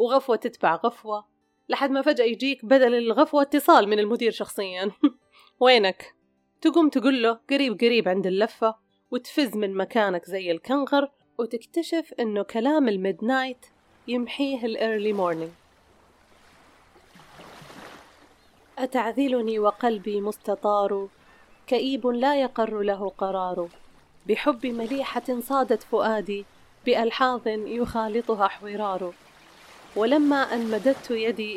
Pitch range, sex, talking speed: 200-260 Hz, female, 95 wpm